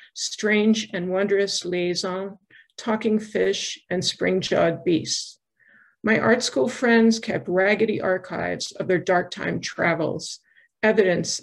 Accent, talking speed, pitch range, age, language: American, 115 wpm, 185-225 Hz, 50-69, English